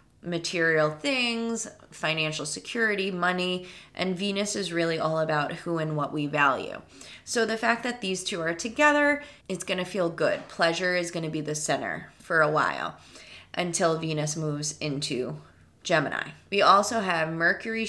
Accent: American